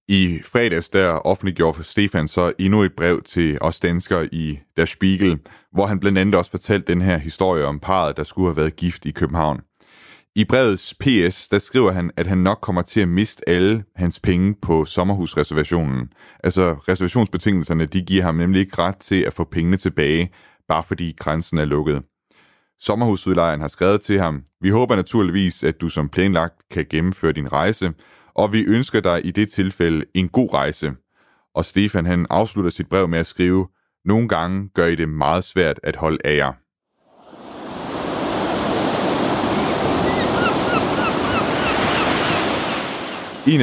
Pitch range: 80-100 Hz